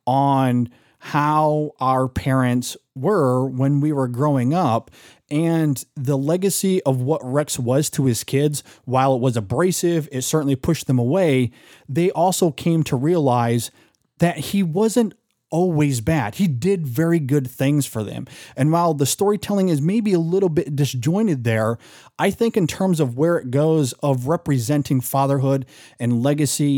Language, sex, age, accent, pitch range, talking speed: English, male, 30-49, American, 130-175 Hz, 155 wpm